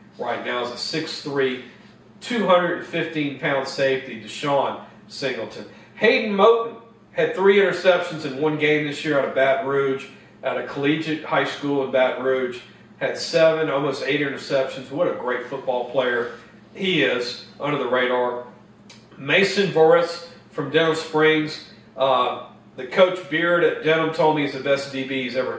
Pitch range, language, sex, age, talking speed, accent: 135-155 Hz, English, male, 40-59, 150 wpm, American